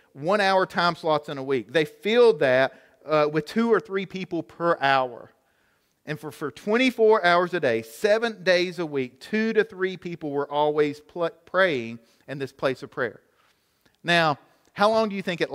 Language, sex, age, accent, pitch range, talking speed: English, male, 40-59, American, 150-195 Hz, 180 wpm